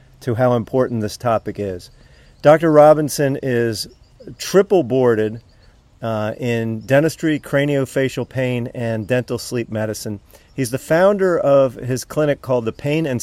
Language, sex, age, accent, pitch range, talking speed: English, male, 40-59, American, 115-140 Hz, 125 wpm